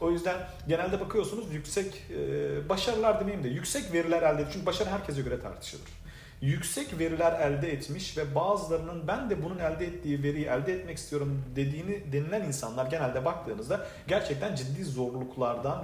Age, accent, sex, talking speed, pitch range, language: 40-59, native, male, 150 wpm, 130-175 Hz, Turkish